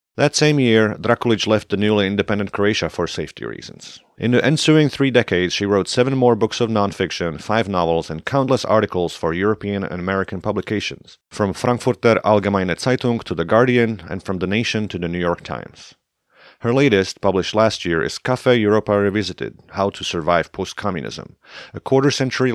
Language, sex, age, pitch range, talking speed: English, male, 40-59, 90-120 Hz, 175 wpm